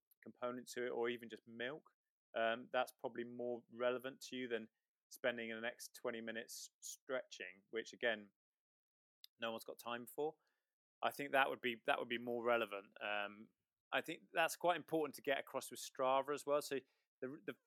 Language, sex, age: English, male, 20-39